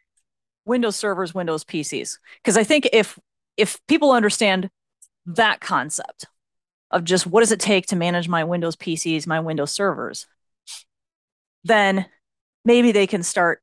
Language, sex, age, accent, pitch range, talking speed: English, female, 30-49, American, 175-230 Hz, 140 wpm